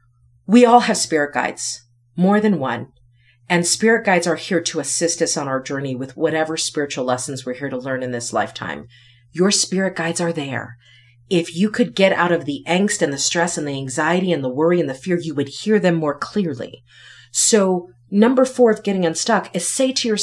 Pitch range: 130-195 Hz